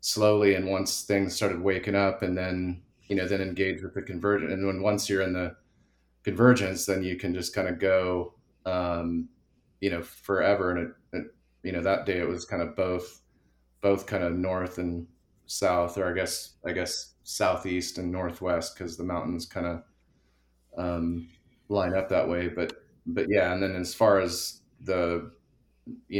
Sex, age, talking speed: male, 30-49, 185 wpm